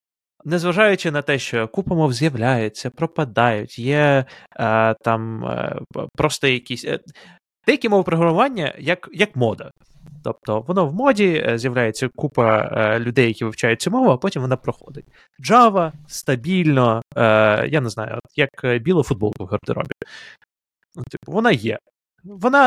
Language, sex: Ukrainian, male